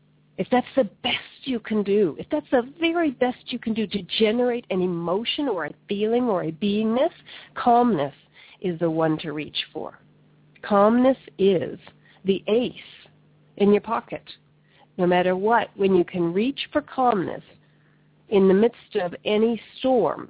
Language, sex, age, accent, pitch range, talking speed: English, female, 40-59, American, 185-250 Hz, 160 wpm